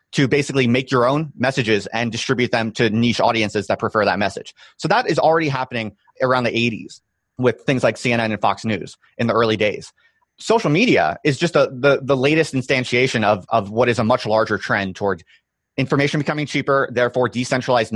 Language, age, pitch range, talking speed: English, 30-49, 110-145 Hz, 195 wpm